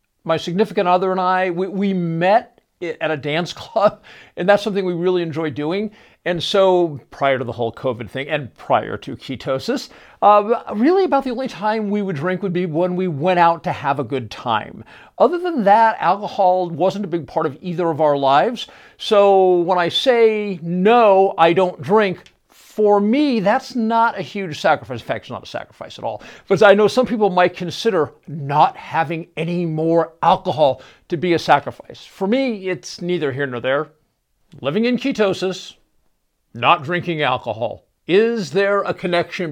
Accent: American